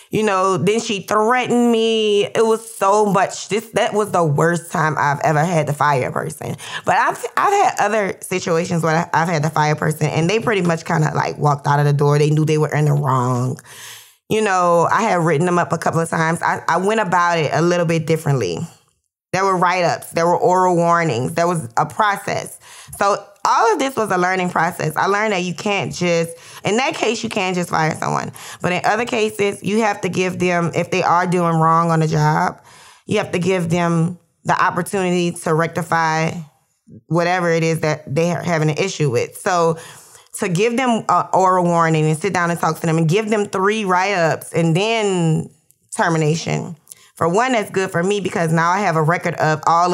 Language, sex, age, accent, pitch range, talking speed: English, female, 20-39, American, 160-195 Hz, 215 wpm